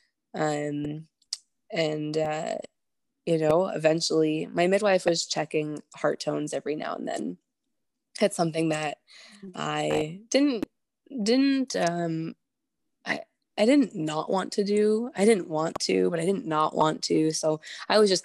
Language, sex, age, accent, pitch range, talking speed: English, female, 20-39, American, 150-200 Hz, 145 wpm